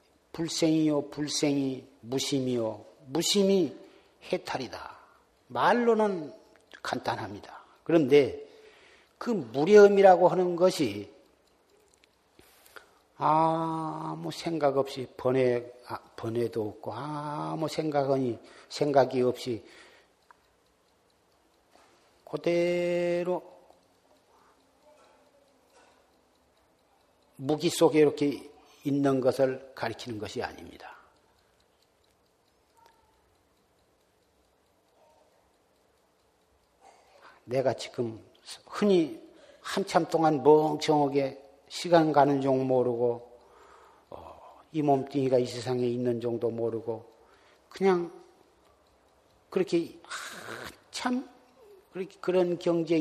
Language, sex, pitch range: Korean, male, 130-175 Hz